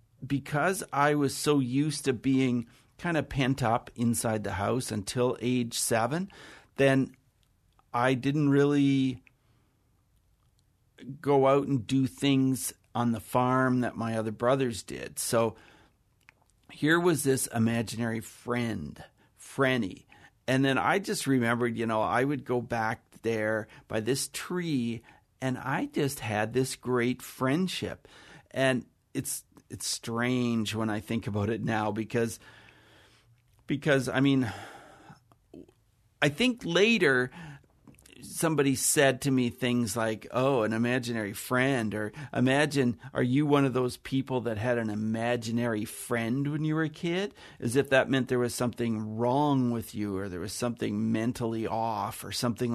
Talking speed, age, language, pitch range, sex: 145 wpm, 50-69, English, 115-135 Hz, male